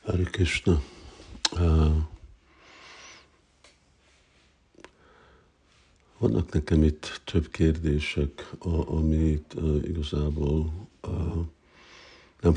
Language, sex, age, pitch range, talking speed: Hungarian, male, 60-79, 75-85 Hz, 50 wpm